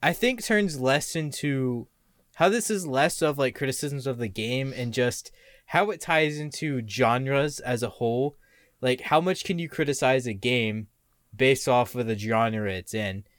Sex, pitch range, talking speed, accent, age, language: male, 110-145 Hz, 180 wpm, American, 20-39, English